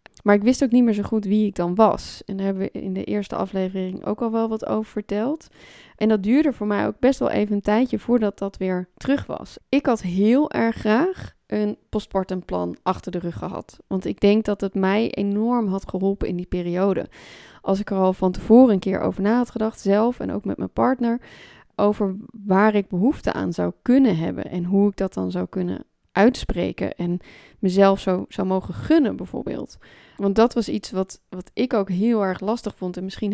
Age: 20-39